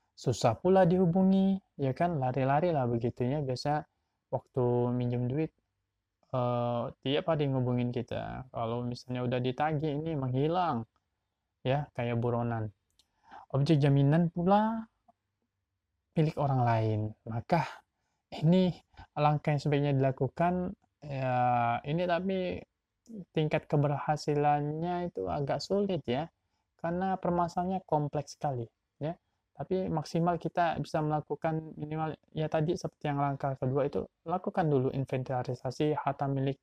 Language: Indonesian